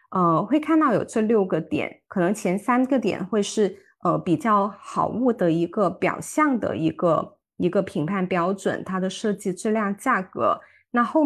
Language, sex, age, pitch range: Chinese, female, 20-39, 180-230 Hz